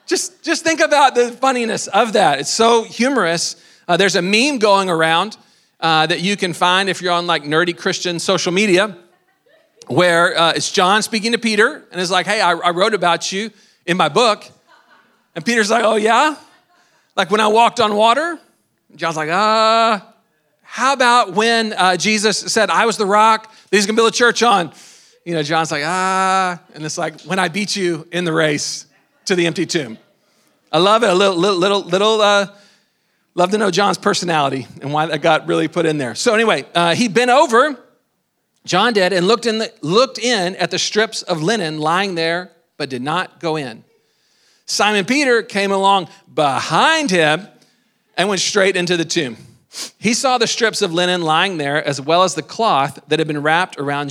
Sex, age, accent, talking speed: male, 40-59, American, 200 wpm